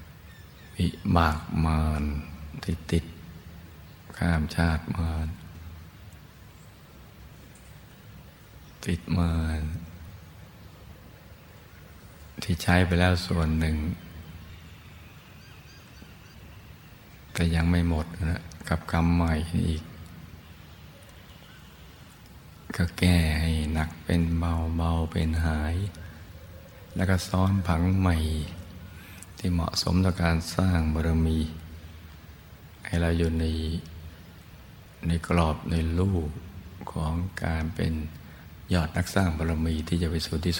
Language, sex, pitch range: Thai, male, 80-85 Hz